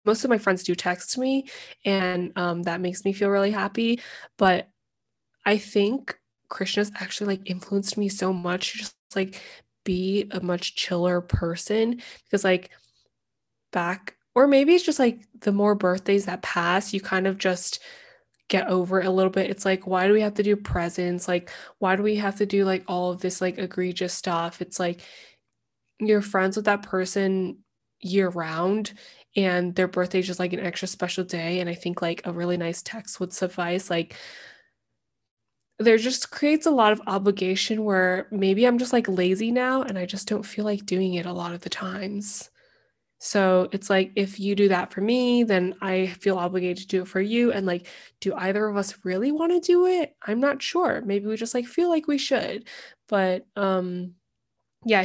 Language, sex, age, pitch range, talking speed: English, female, 20-39, 180-215 Hz, 195 wpm